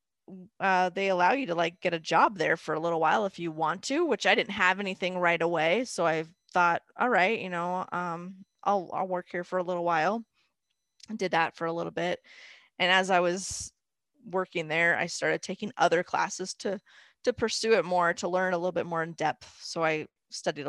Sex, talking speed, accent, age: female, 220 wpm, American, 30-49